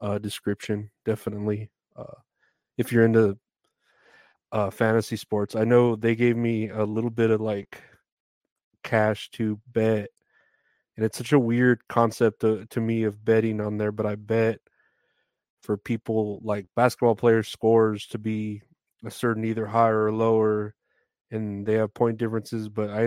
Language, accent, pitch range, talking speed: English, American, 110-120 Hz, 155 wpm